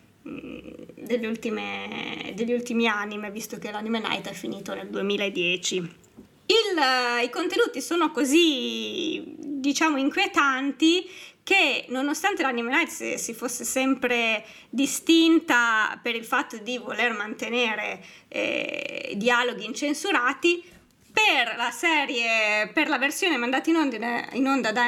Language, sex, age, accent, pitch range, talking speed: Italian, female, 20-39, native, 230-310 Hz, 105 wpm